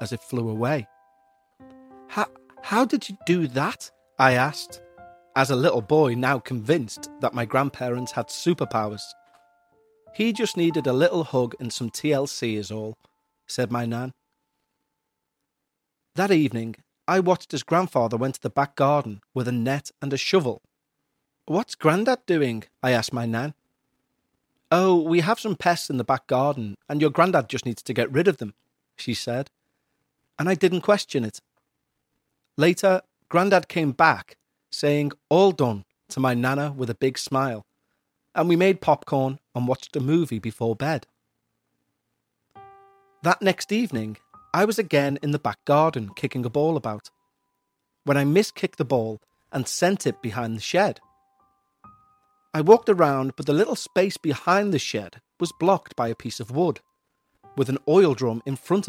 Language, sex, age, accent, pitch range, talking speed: English, male, 40-59, British, 125-175 Hz, 160 wpm